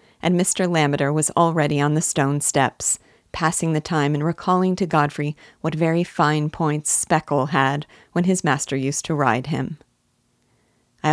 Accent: American